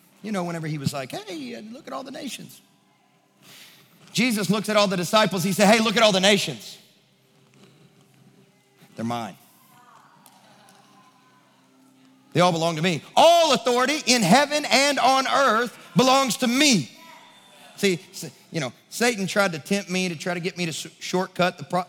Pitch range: 165-215 Hz